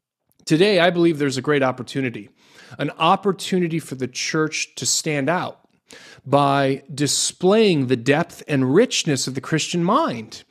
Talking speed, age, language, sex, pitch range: 145 wpm, 40-59, English, male, 130-175 Hz